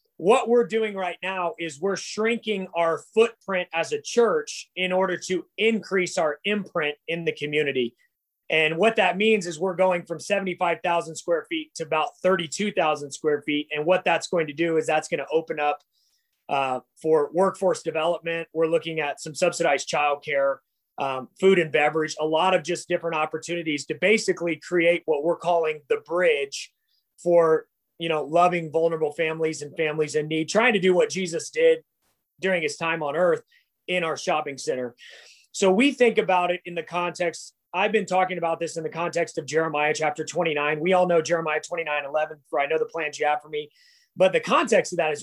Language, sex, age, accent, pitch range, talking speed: English, male, 30-49, American, 155-190 Hz, 190 wpm